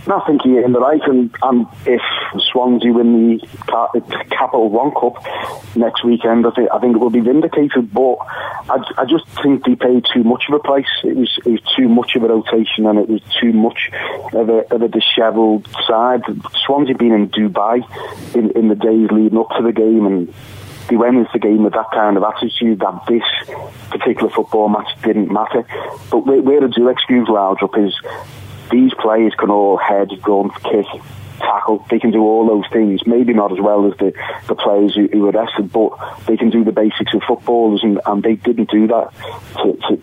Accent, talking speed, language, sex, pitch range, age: British, 210 wpm, English, male, 105-120 Hz, 40-59